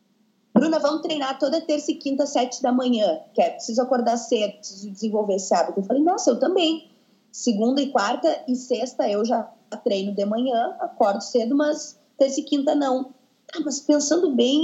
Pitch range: 225-300 Hz